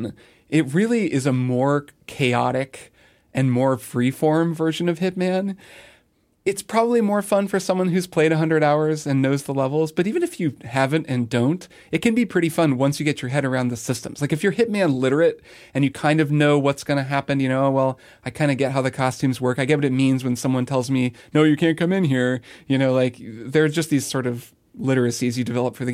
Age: 30-49